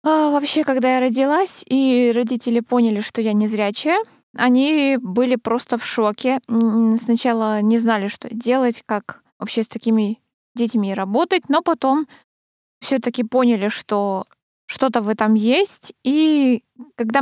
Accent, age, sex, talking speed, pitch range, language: native, 20-39, female, 135 wpm, 225-285 Hz, Russian